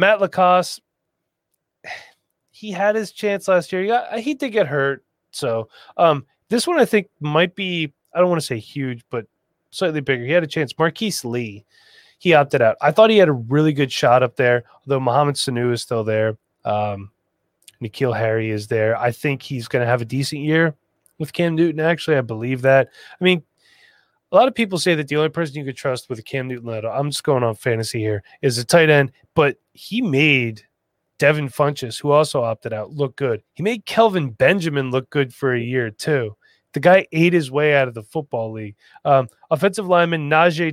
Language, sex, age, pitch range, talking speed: English, male, 20-39, 120-170 Hz, 210 wpm